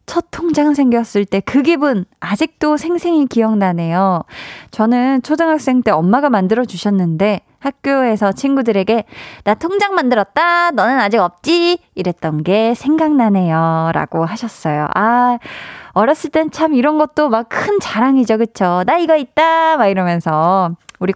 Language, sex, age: Korean, female, 20-39